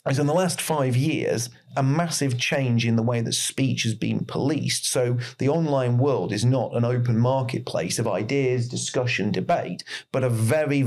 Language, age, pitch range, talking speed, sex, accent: English, 40-59, 120-140 Hz, 180 wpm, male, British